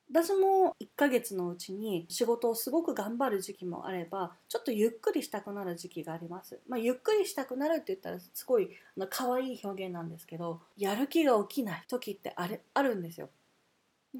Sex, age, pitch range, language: female, 30-49, 190-310 Hz, Japanese